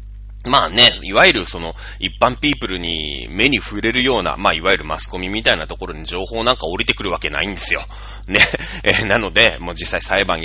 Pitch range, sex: 85-125 Hz, male